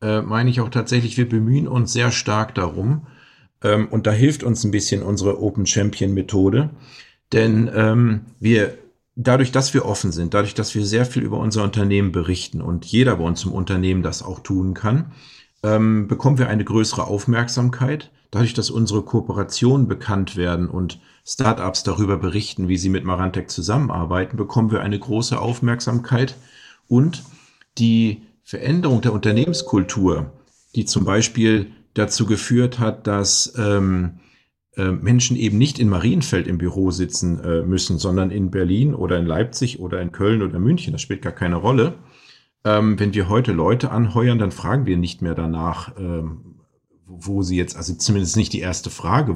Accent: German